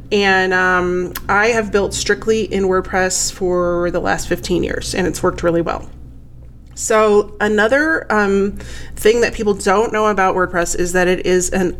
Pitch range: 175-210 Hz